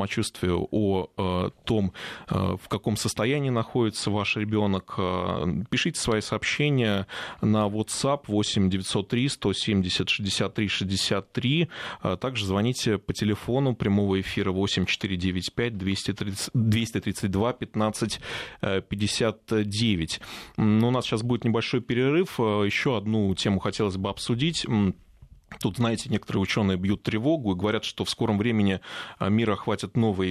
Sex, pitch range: male, 100-115 Hz